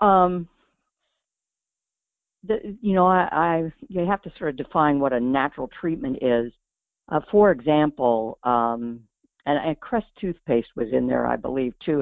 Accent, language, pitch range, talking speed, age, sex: American, English, 130-175 Hz, 155 wpm, 60-79, female